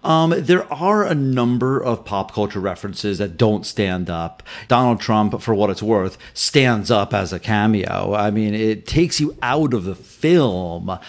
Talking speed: 180 wpm